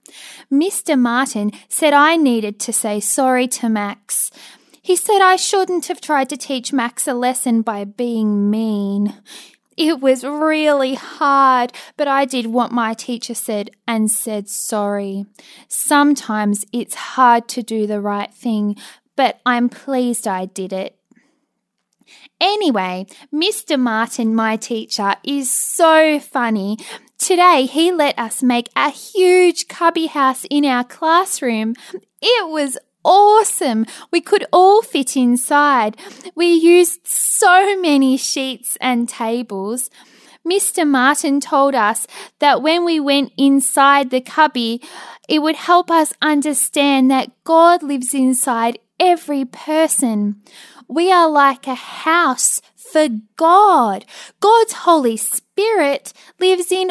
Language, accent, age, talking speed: English, Australian, 10-29, 130 wpm